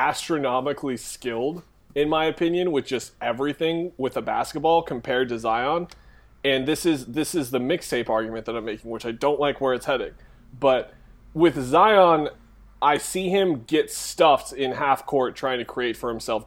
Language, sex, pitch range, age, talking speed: English, male, 115-145 Hz, 30-49, 175 wpm